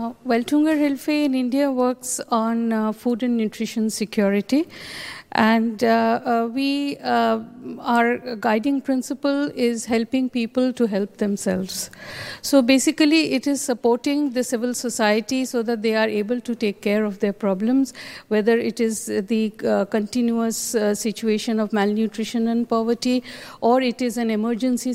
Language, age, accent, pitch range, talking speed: English, 50-69, Indian, 215-250 Hz, 150 wpm